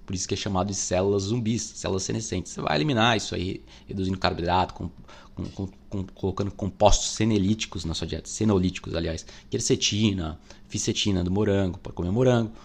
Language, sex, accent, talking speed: Portuguese, male, Brazilian, 170 wpm